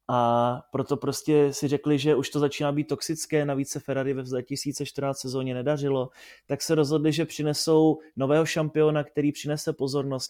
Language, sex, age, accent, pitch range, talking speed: Czech, male, 20-39, native, 130-150 Hz, 165 wpm